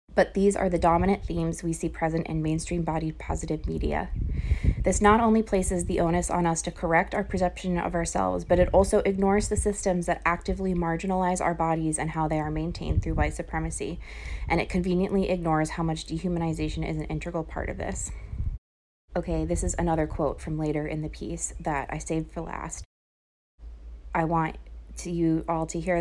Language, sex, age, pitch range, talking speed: English, female, 20-39, 155-180 Hz, 190 wpm